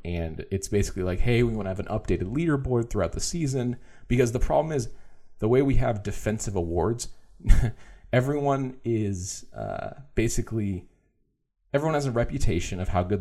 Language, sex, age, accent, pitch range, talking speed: English, male, 30-49, American, 90-120 Hz, 165 wpm